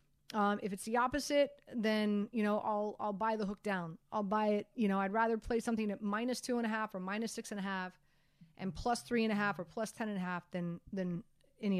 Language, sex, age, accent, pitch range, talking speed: English, female, 30-49, American, 185-230 Hz, 200 wpm